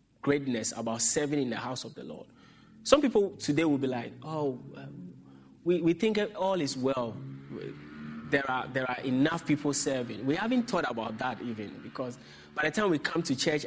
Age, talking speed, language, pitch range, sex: 30-49, 190 wpm, English, 125-165 Hz, male